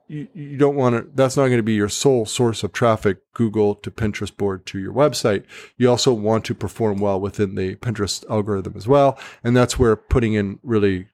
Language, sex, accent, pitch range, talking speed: English, male, American, 110-135 Hz, 210 wpm